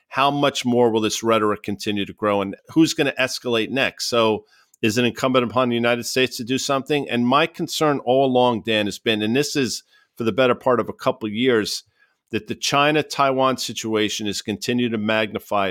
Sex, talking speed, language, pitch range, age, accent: male, 205 wpm, English, 105-130 Hz, 50-69, American